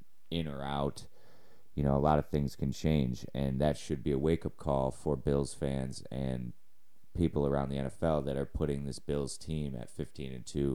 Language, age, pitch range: English, 30-49, 65-80 Hz